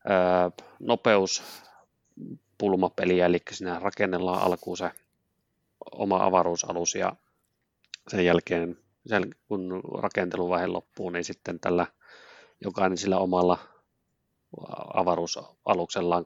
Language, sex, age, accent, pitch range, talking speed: Finnish, male, 30-49, native, 90-100 Hz, 90 wpm